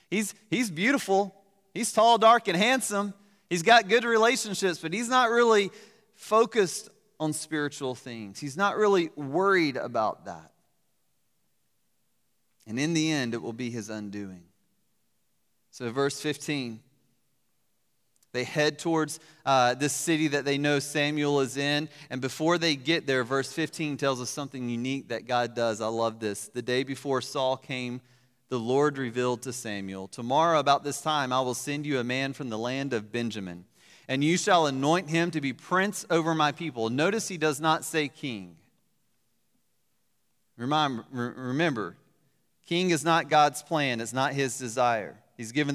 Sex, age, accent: male, 30-49, American